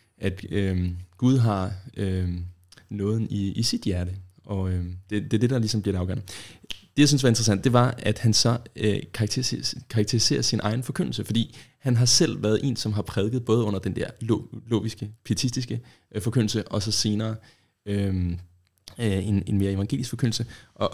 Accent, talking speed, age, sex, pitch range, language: native, 165 wpm, 20-39, male, 100-125 Hz, Danish